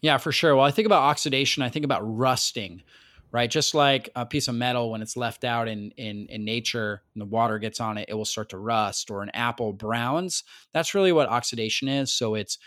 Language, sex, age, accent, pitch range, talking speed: English, male, 30-49, American, 115-145 Hz, 230 wpm